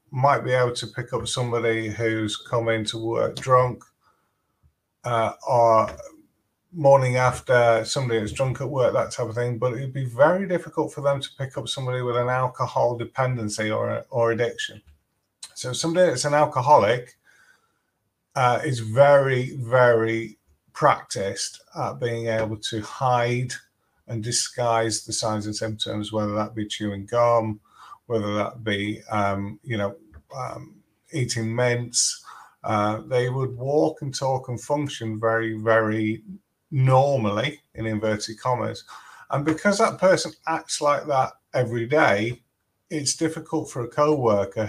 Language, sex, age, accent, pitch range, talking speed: English, male, 30-49, British, 110-135 Hz, 140 wpm